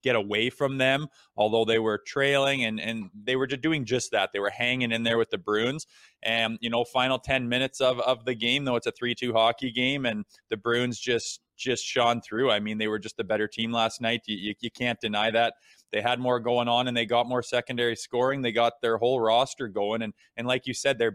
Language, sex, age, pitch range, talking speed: English, male, 20-39, 110-120 Hz, 245 wpm